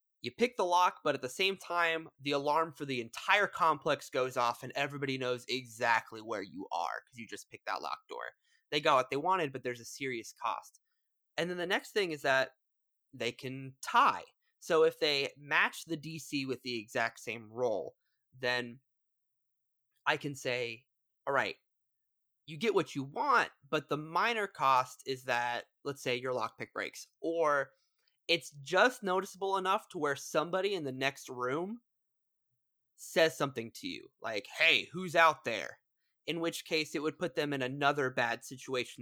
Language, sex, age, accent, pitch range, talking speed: English, male, 20-39, American, 125-170 Hz, 180 wpm